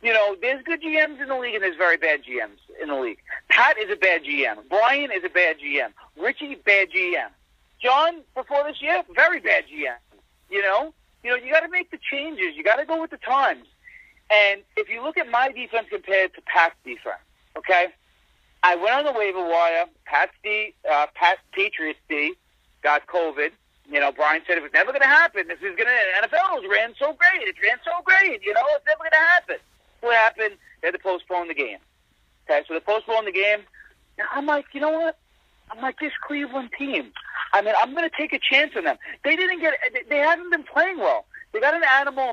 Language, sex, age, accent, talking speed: English, male, 40-59, American, 215 wpm